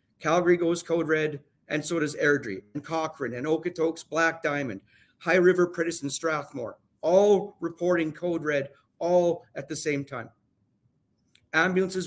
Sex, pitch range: male, 145-175 Hz